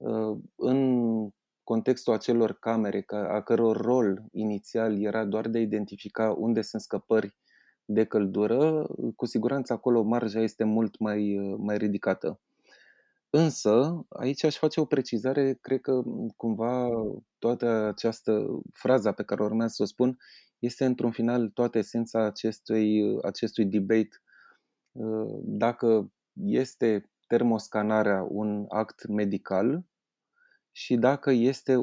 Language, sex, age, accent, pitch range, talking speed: Romanian, male, 20-39, native, 110-130 Hz, 115 wpm